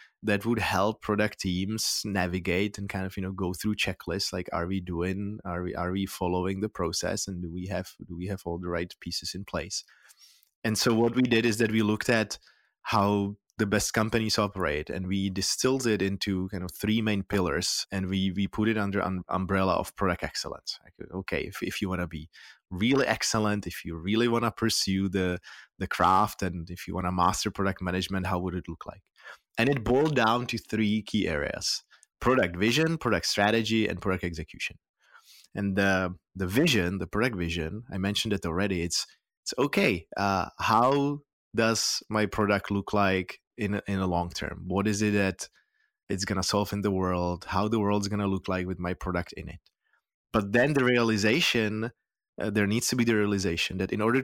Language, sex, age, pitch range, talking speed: English, male, 20-39, 95-110 Hz, 200 wpm